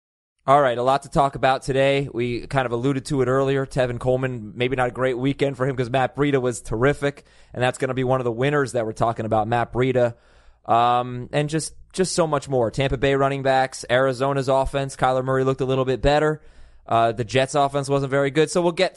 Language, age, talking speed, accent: English, 20-39, 235 wpm, American